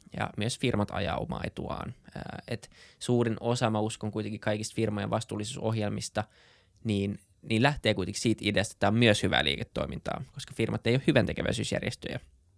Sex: male